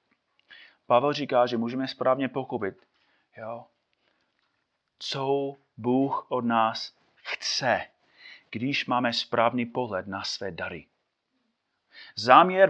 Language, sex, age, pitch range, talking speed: Czech, male, 30-49, 135-195 Hz, 95 wpm